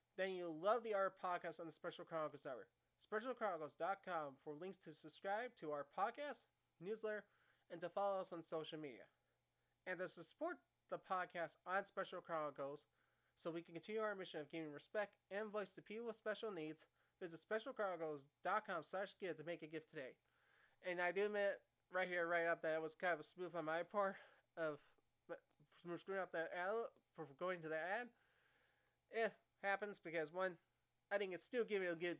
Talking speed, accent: 185 wpm, American